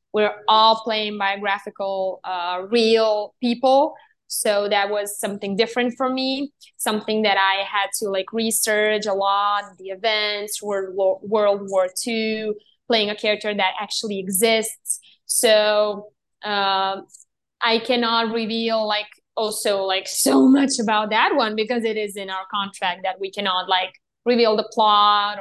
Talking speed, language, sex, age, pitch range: 145 wpm, English, female, 20-39, 195-225 Hz